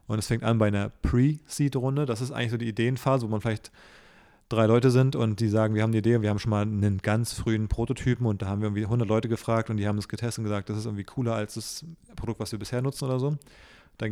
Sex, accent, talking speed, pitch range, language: male, German, 270 wpm, 105-120 Hz, German